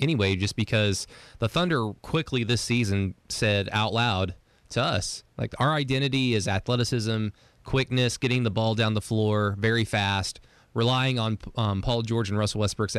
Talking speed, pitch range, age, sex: 160 wpm, 105-125 Hz, 20-39, male